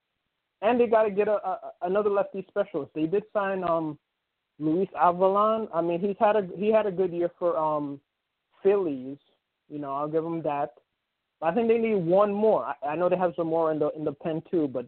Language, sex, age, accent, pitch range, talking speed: English, male, 20-39, American, 150-180 Hz, 225 wpm